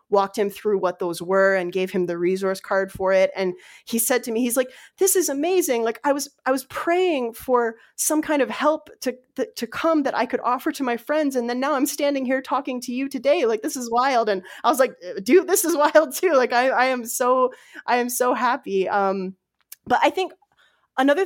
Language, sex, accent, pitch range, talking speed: English, female, American, 190-255 Hz, 230 wpm